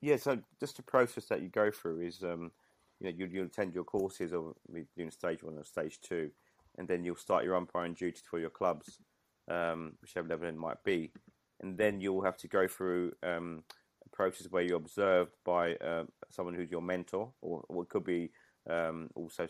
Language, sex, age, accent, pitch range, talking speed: English, male, 30-49, British, 85-90 Hz, 210 wpm